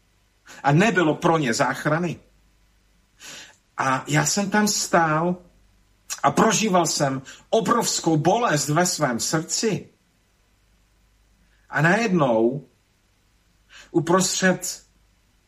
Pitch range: 110-165 Hz